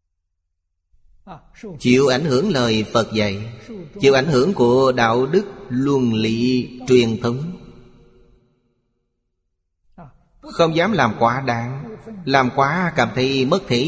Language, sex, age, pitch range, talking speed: Vietnamese, male, 20-39, 110-135 Hz, 115 wpm